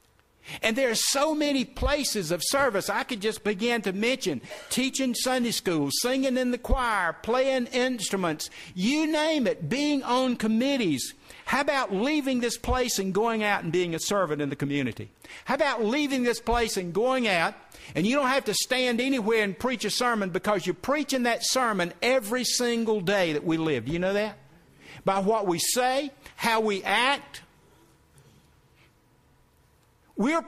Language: English